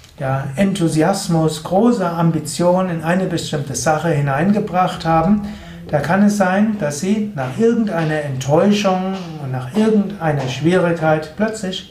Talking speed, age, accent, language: 120 wpm, 60-79, German, German